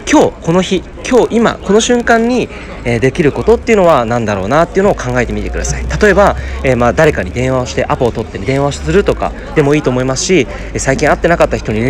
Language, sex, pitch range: Japanese, male, 115-185 Hz